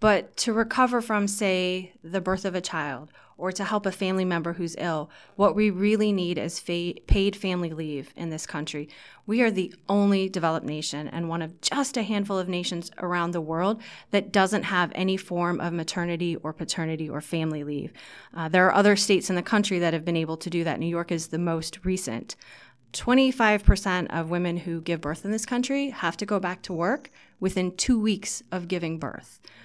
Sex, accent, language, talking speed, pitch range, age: female, American, English, 205 wpm, 165-200 Hz, 30-49